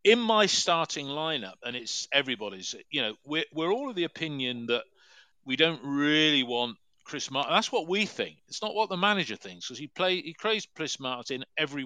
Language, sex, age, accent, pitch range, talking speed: English, male, 40-59, British, 120-170 Hz, 195 wpm